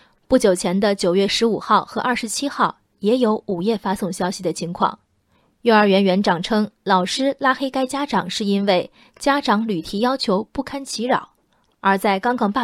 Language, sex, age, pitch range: Chinese, female, 20-39, 195-245 Hz